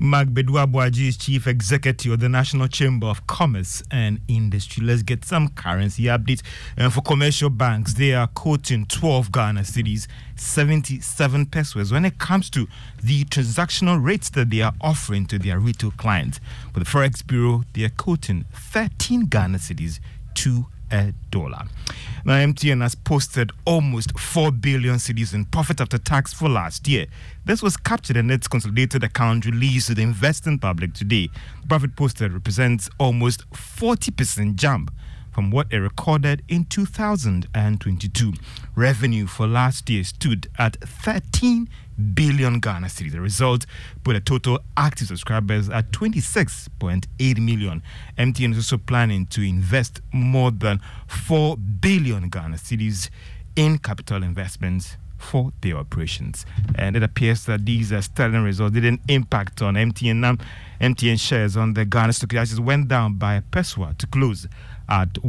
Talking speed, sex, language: 150 wpm, male, English